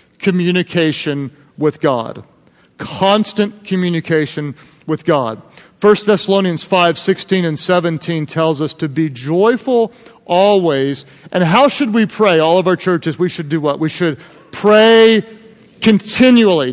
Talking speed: 130 wpm